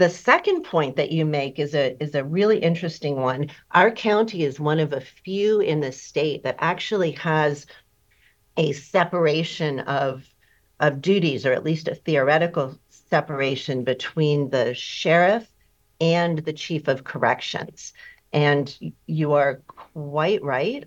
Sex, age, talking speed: female, 50-69, 145 wpm